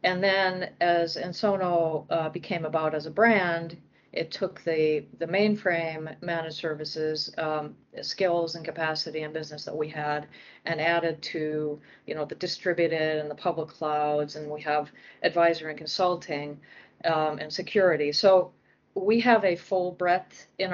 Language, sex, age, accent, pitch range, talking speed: English, female, 40-59, American, 155-185 Hz, 155 wpm